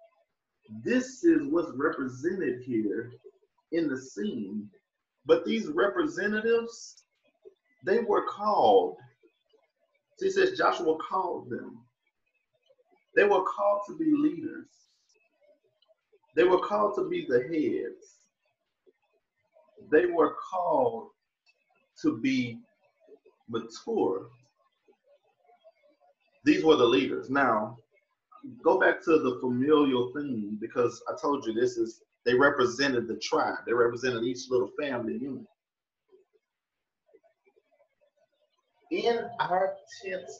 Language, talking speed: English, 100 wpm